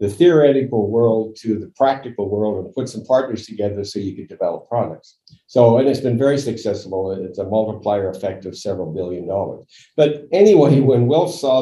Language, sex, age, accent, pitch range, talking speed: English, male, 60-79, American, 110-145 Hz, 185 wpm